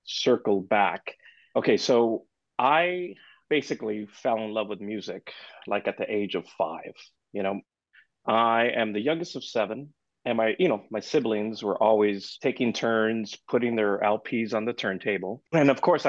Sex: male